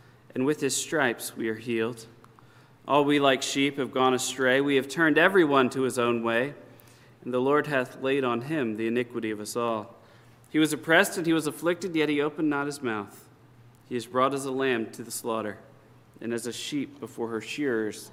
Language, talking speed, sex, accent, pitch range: English, 210 wpm, male, American, 115-135 Hz